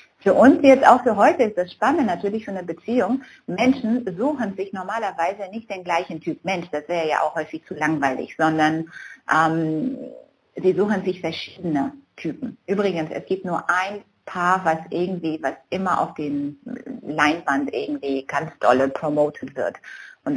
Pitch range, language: 160-225 Hz, German